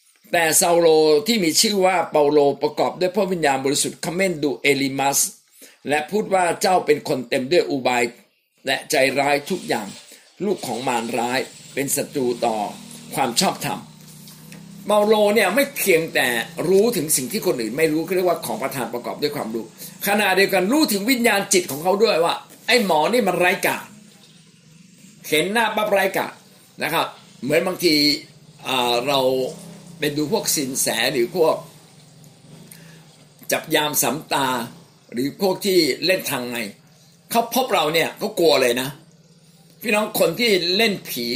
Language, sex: Thai, male